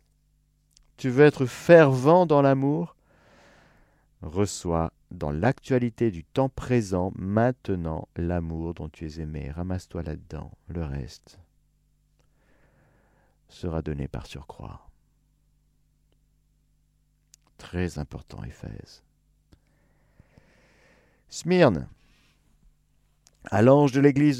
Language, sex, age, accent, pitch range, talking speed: French, male, 50-69, French, 85-140 Hz, 85 wpm